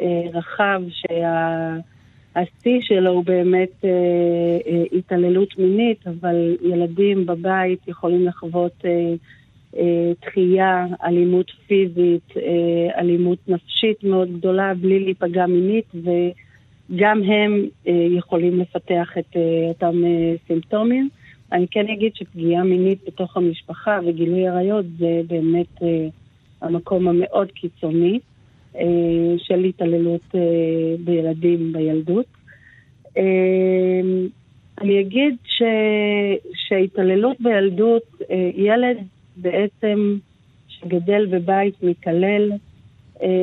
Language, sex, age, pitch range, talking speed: Hebrew, female, 50-69, 170-195 Hz, 100 wpm